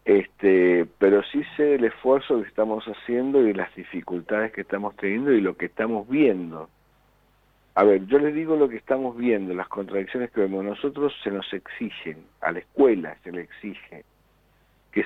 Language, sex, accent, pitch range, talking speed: Spanish, male, Argentinian, 95-125 Hz, 170 wpm